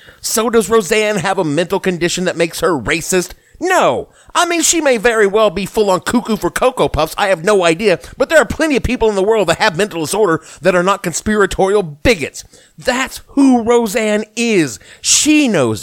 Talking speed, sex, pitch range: 195 wpm, male, 160-220 Hz